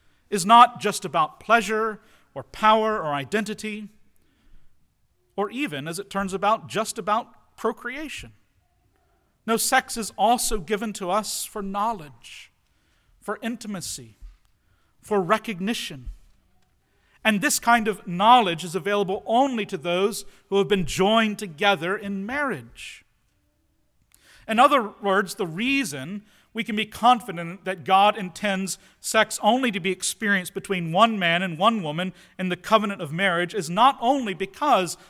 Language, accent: English, American